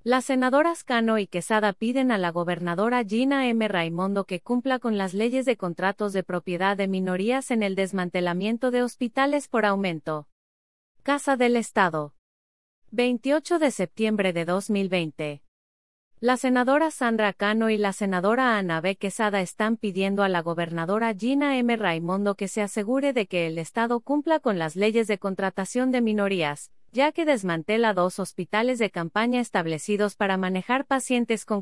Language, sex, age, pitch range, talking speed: English, female, 30-49, 180-245 Hz, 160 wpm